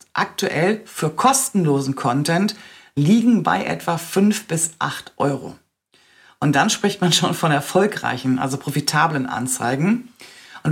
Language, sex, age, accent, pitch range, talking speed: German, female, 40-59, German, 155-210 Hz, 125 wpm